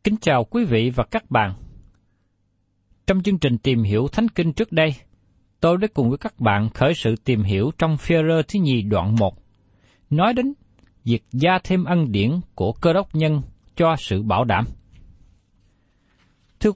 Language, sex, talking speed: Vietnamese, male, 170 wpm